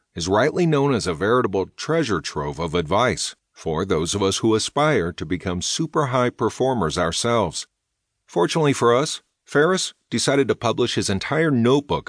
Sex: male